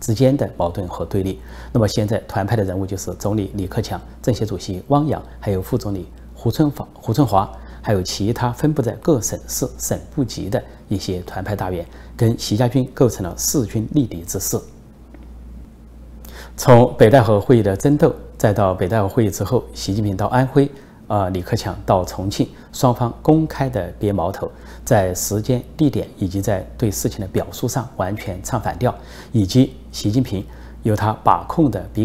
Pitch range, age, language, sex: 90-125 Hz, 30-49, Chinese, male